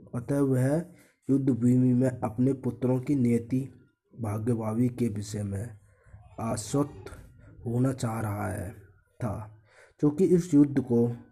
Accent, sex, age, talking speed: native, male, 20-39, 120 wpm